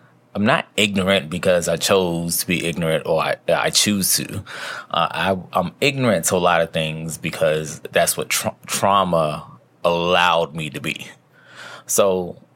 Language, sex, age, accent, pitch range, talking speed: English, male, 20-39, American, 85-100 Hz, 150 wpm